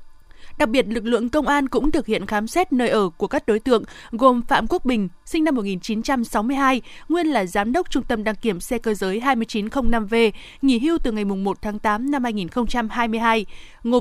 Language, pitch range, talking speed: Vietnamese, 220-275 Hz, 195 wpm